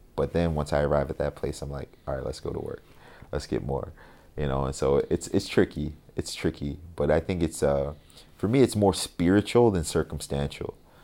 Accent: American